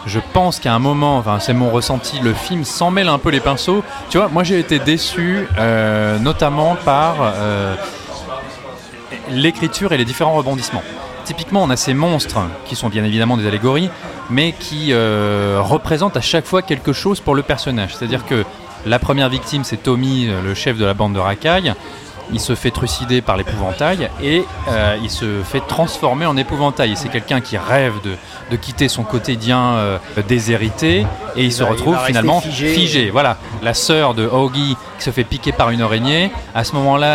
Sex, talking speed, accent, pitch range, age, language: male, 185 wpm, French, 110-145 Hz, 30-49, French